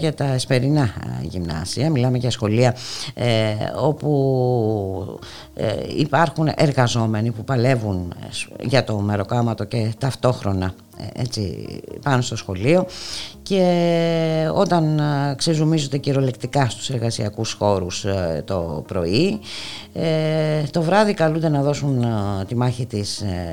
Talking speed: 95 wpm